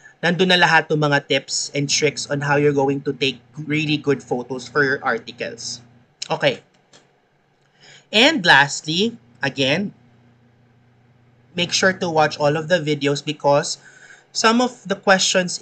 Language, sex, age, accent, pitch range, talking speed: English, male, 30-49, Filipino, 145-180 Hz, 140 wpm